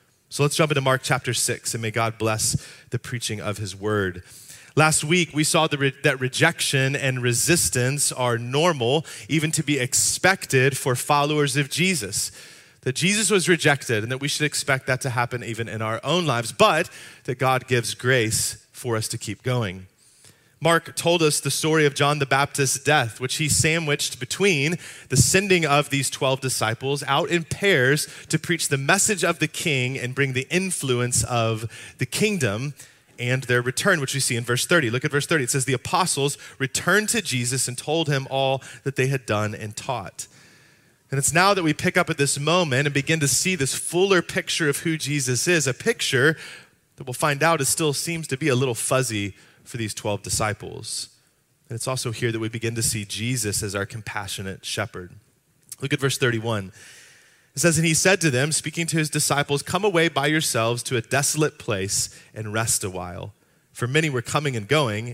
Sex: male